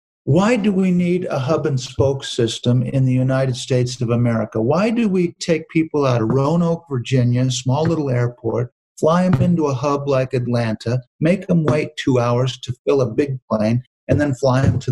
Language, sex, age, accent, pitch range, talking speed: English, male, 50-69, American, 115-140 Hz, 200 wpm